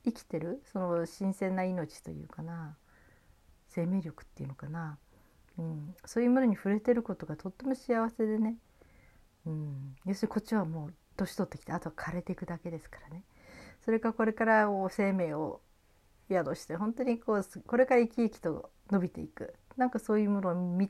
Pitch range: 155-205 Hz